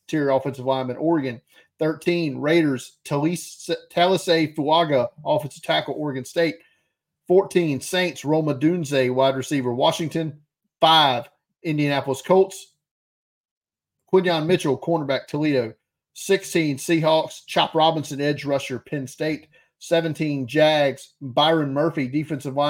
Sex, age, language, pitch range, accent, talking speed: male, 40-59, English, 135-160 Hz, American, 105 wpm